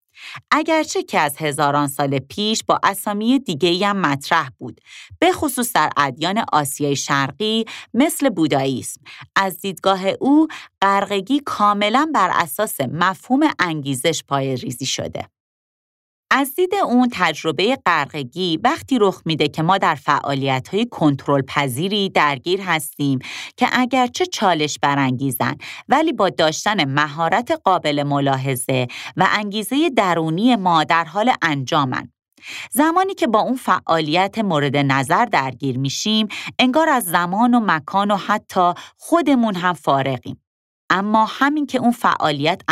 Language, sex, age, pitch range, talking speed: Persian, female, 30-49, 150-240 Hz, 125 wpm